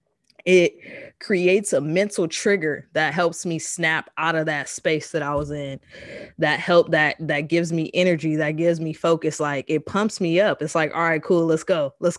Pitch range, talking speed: 155-180 Hz, 200 wpm